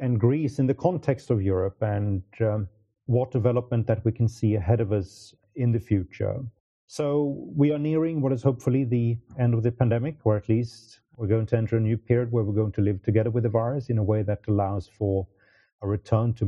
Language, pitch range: English, 100-125 Hz